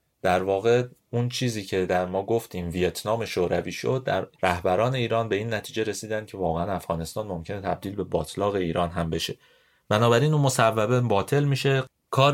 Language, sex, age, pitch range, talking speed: Persian, male, 30-49, 90-120 Hz, 165 wpm